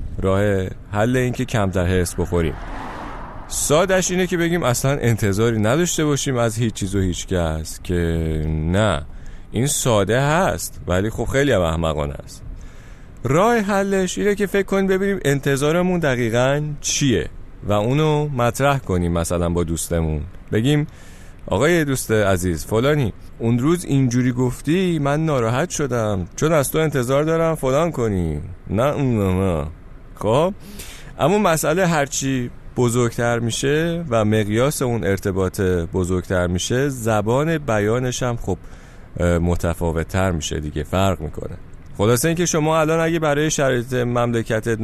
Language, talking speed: Persian, 130 wpm